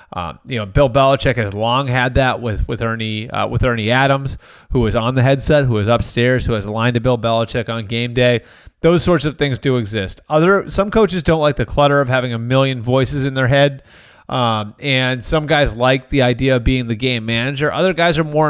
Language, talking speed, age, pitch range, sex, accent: English, 230 wpm, 30-49, 115-140 Hz, male, American